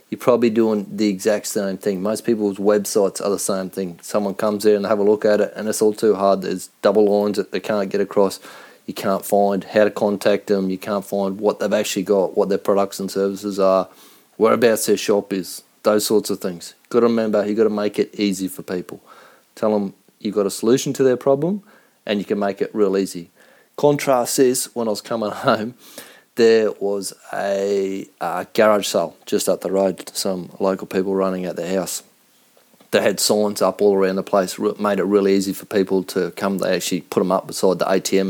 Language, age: English, 30-49